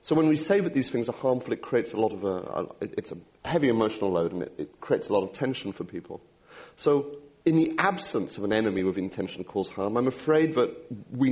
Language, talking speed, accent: English, 250 wpm, British